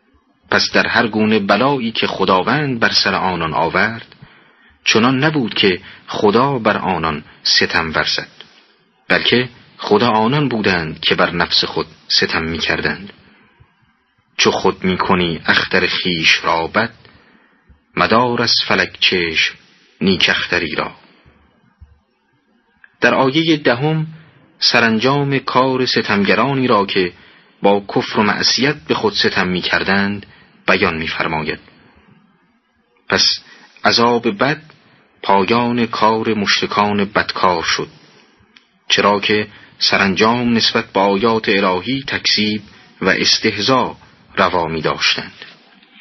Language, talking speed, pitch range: Persian, 105 wpm, 100-135 Hz